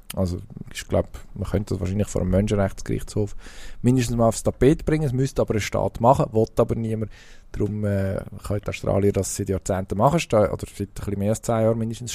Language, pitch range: German, 95-125 Hz